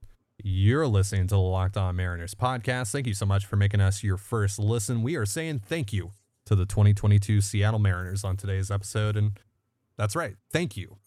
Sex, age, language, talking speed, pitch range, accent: male, 30-49, English, 195 wpm, 100-120 Hz, American